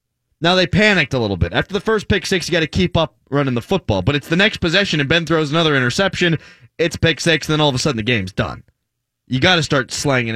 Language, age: English, 20-39